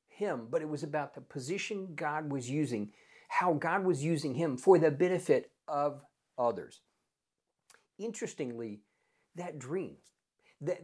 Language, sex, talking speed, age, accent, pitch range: English, male, 135 wpm, 50-69, American, 130-185 Hz